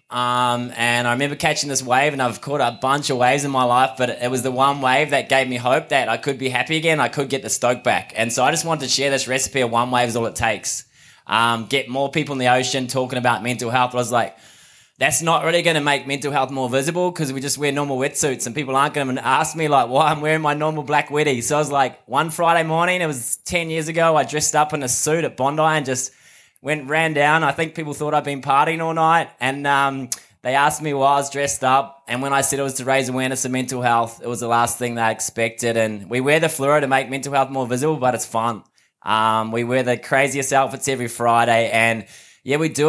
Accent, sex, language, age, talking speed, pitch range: Australian, male, English, 20-39, 265 wpm, 125-150 Hz